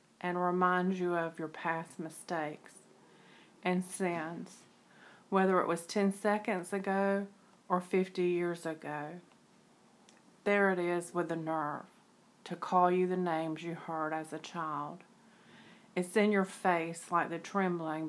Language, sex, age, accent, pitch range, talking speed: English, female, 40-59, American, 165-190 Hz, 140 wpm